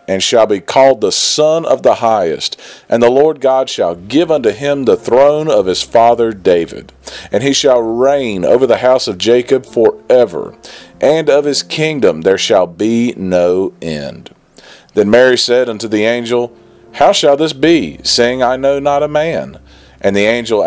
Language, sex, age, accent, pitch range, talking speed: English, male, 40-59, American, 95-140 Hz, 180 wpm